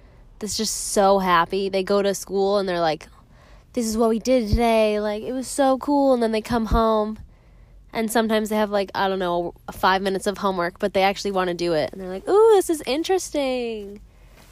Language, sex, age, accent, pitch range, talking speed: English, female, 10-29, American, 195-255 Hz, 220 wpm